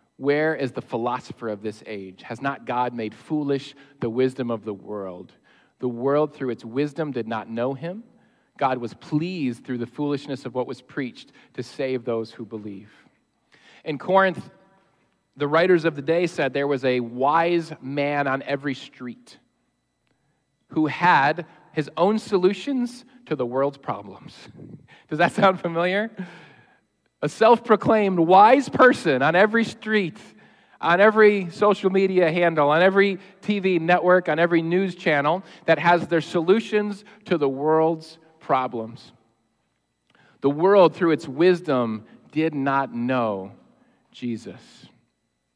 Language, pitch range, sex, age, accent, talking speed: English, 120-180 Hz, male, 40-59, American, 140 wpm